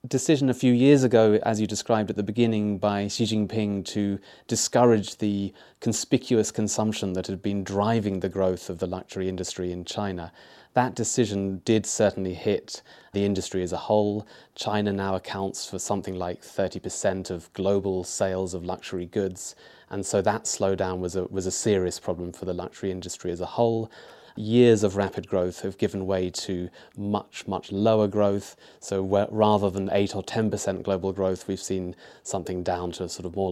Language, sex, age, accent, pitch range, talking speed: English, male, 30-49, British, 95-110 Hz, 175 wpm